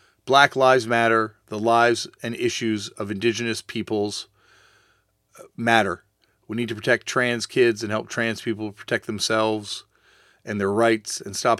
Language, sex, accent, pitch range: English, male, American, 100-120 Hz